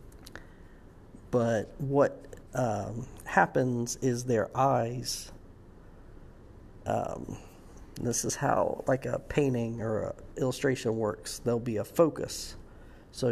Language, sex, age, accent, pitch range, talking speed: English, male, 50-69, American, 100-120 Hz, 100 wpm